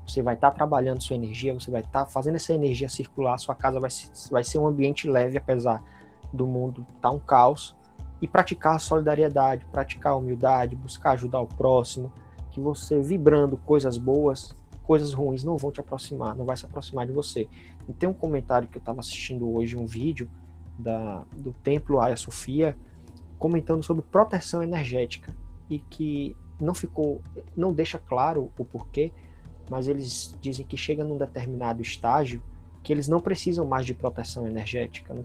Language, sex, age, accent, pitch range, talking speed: Portuguese, male, 20-39, Brazilian, 115-145 Hz, 175 wpm